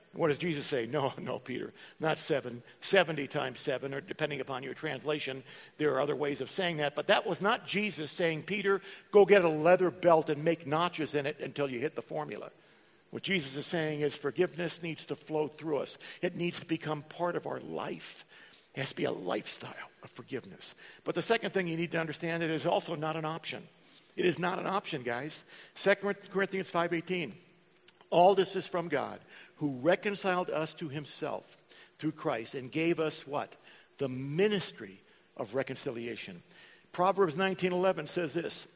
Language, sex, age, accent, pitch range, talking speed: English, male, 50-69, American, 150-185 Hz, 185 wpm